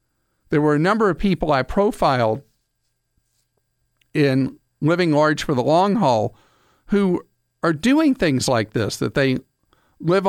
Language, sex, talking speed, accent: English, male, 140 wpm, American